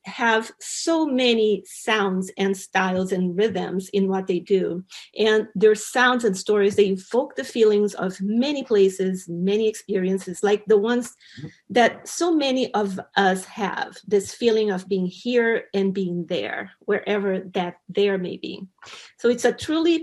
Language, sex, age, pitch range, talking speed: English, female, 40-59, 195-240 Hz, 155 wpm